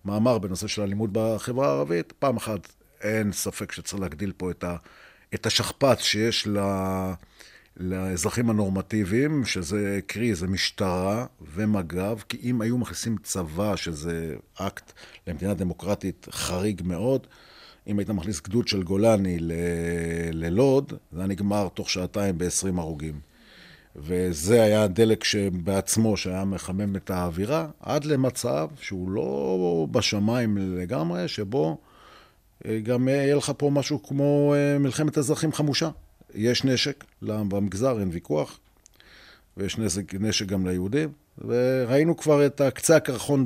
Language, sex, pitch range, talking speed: Hebrew, male, 95-125 Hz, 120 wpm